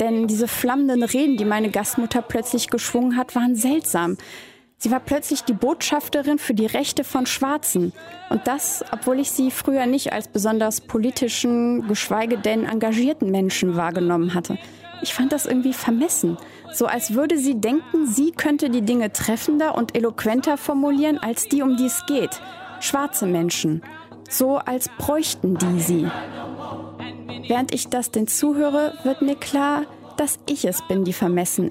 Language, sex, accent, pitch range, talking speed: German, female, German, 220-285 Hz, 155 wpm